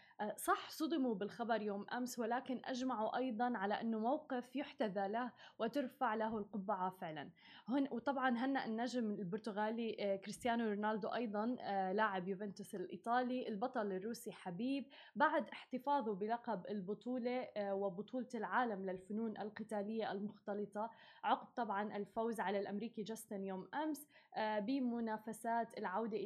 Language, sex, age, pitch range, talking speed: Arabic, female, 20-39, 205-235 Hz, 115 wpm